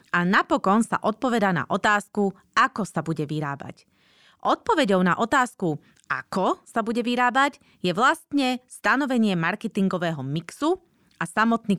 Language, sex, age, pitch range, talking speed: Slovak, female, 30-49, 175-250 Hz, 120 wpm